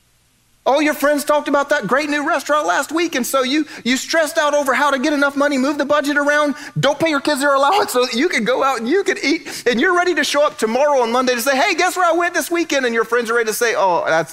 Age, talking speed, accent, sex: 40-59, 295 wpm, American, male